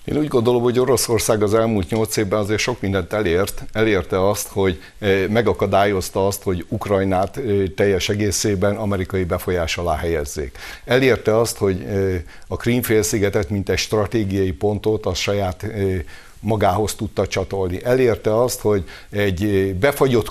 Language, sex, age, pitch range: Hungarian, male, 60-79, 95-110 Hz